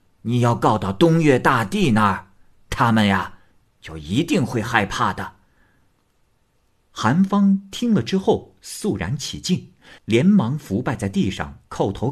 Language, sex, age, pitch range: Chinese, male, 50-69, 90-135 Hz